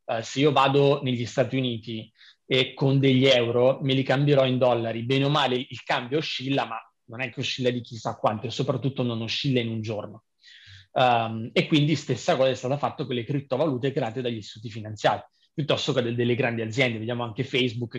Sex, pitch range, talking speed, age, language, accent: male, 120-160 Hz, 195 wpm, 30-49, Italian, native